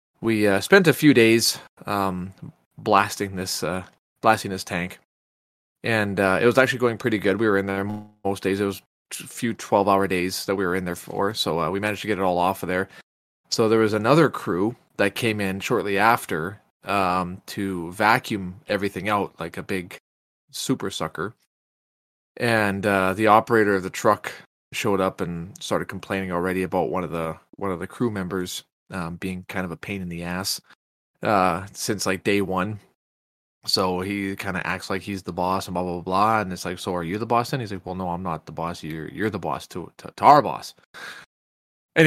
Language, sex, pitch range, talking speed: English, male, 90-110 Hz, 215 wpm